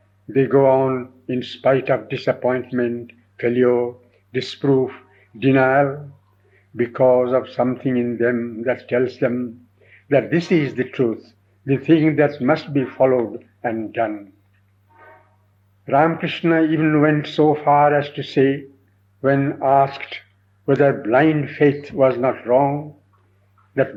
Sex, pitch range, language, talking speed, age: male, 110-140 Hz, English, 120 wpm, 60-79